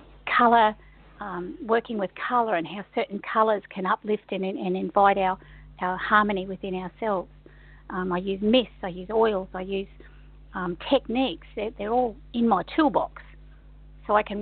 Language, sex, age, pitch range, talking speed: English, female, 50-69, 190-240 Hz, 160 wpm